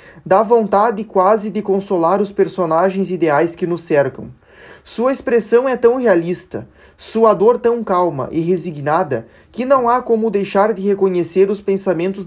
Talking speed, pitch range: 150 wpm, 180-220 Hz